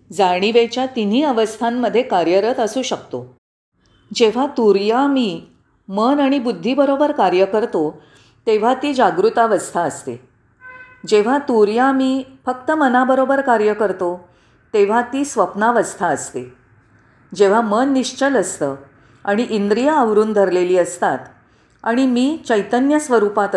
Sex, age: female, 40-59